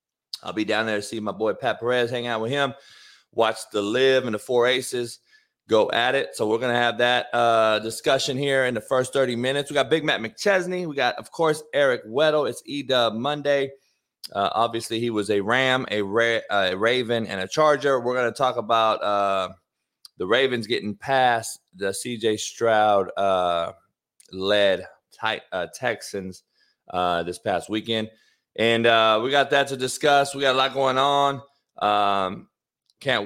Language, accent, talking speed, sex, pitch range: English, American, 180 wpm, male, 110-140 Hz